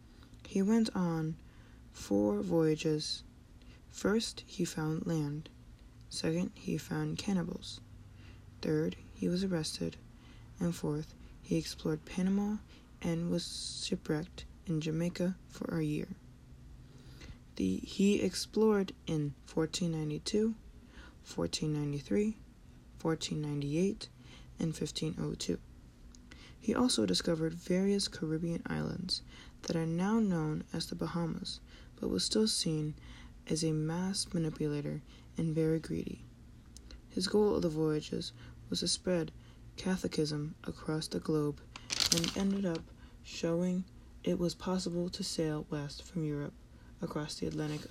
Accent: American